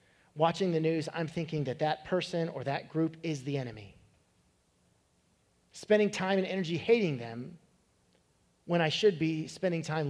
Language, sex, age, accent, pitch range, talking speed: English, male, 40-59, American, 135-180 Hz, 155 wpm